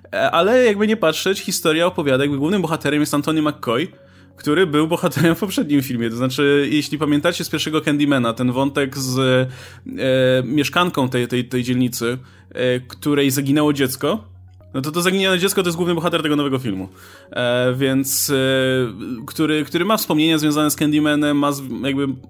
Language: Polish